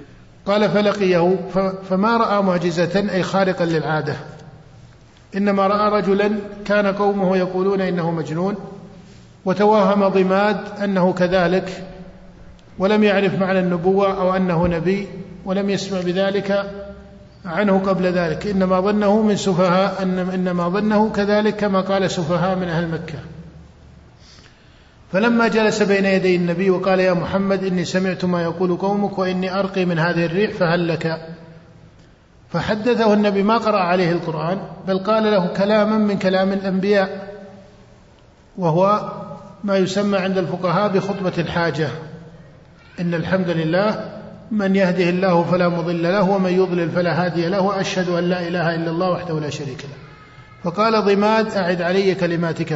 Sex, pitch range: male, 175-200 Hz